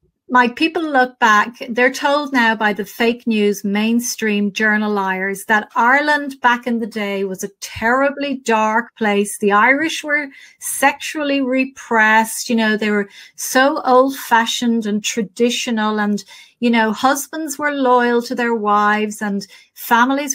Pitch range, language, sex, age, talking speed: 215-255 Hz, English, female, 30-49, 145 wpm